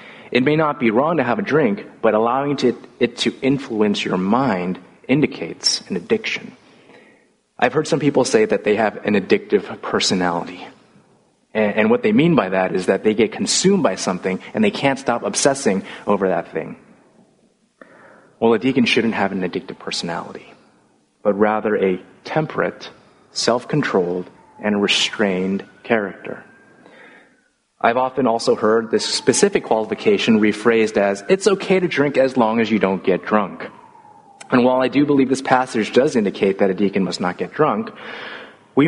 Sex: male